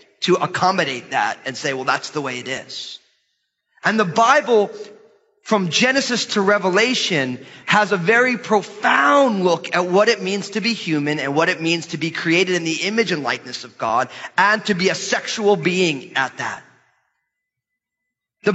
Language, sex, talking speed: English, male, 170 wpm